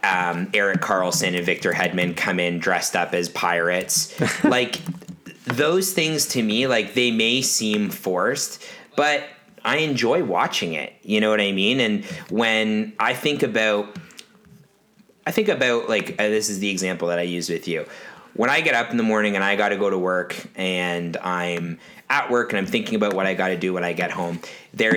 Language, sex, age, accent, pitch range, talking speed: English, male, 30-49, American, 90-110 Hz, 195 wpm